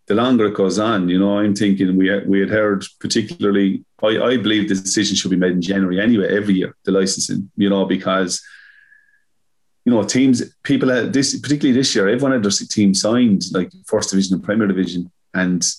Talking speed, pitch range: 200 wpm, 95-105 Hz